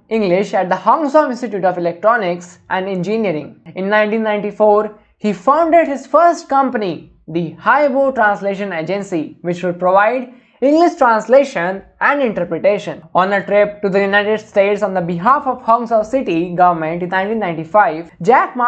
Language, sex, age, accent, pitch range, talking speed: English, male, 20-39, Indian, 180-235 Hz, 140 wpm